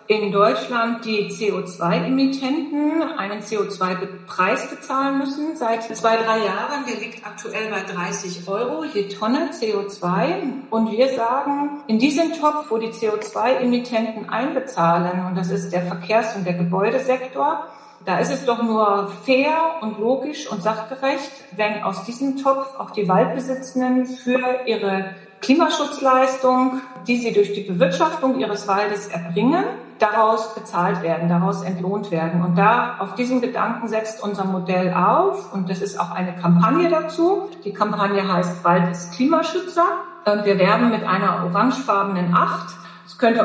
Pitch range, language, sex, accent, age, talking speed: 195-255 Hz, German, female, German, 40-59, 145 wpm